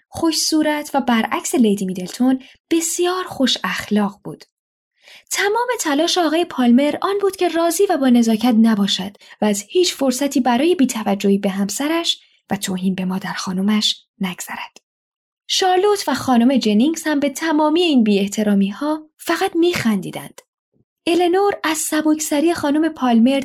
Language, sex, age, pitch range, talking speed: Persian, female, 10-29, 215-310 Hz, 130 wpm